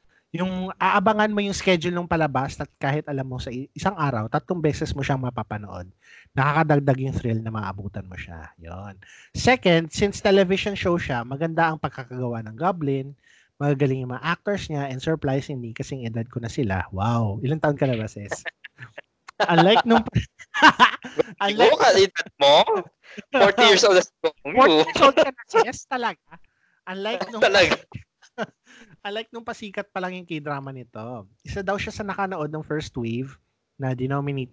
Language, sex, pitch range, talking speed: English, male, 120-190 Hz, 160 wpm